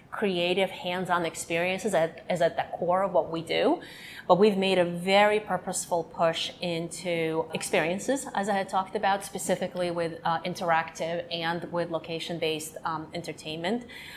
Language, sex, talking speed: English, female, 140 wpm